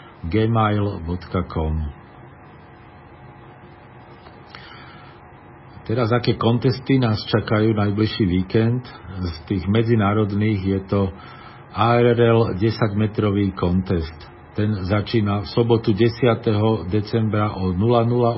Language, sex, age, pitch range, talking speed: Slovak, male, 50-69, 100-120 Hz, 80 wpm